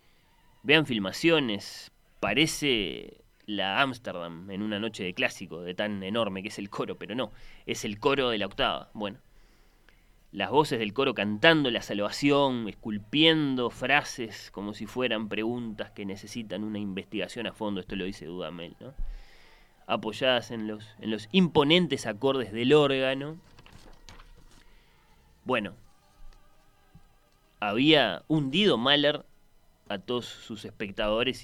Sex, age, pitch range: male, 20-39, 105-140 Hz